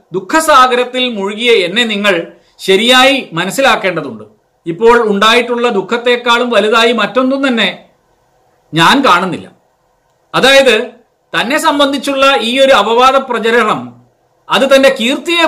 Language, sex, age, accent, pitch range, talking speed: Malayalam, male, 50-69, native, 210-270 Hz, 95 wpm